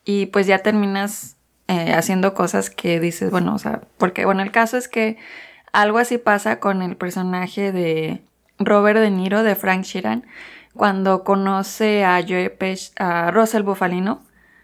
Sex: female